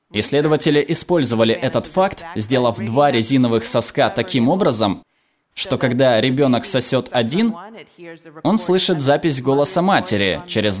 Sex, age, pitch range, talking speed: male, 20-39, 120-165 Hz, 115 wpm